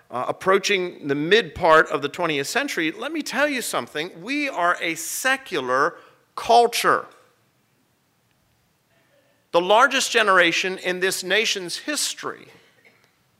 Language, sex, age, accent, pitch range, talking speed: English, male, 40-59, American, 145-205 Hz, 110 wpm